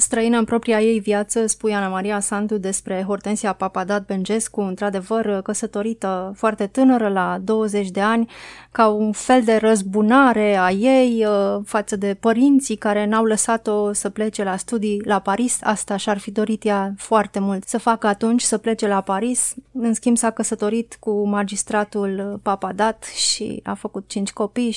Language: Romanian